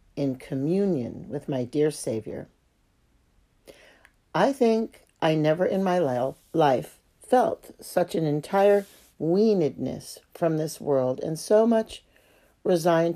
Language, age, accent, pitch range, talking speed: English, 60-79, American, 135-180 Hz, 115 wpm